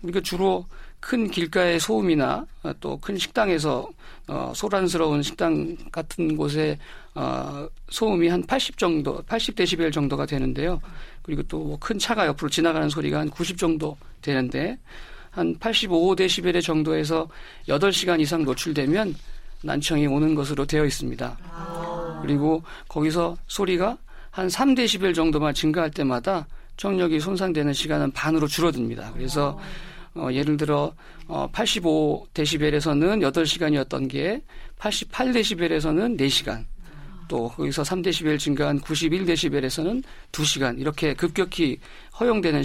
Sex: male